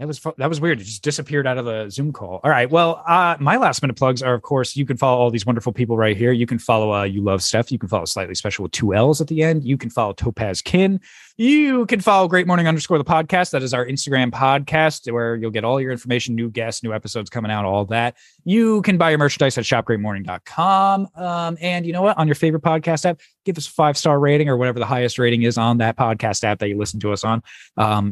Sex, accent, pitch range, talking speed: male, American, 110-155 Hz, 260 wpm